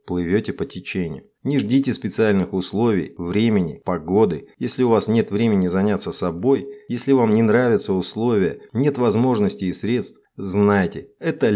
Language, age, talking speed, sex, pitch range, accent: Russian, 30-49, 140 wpm, male, 95-115 Hz, native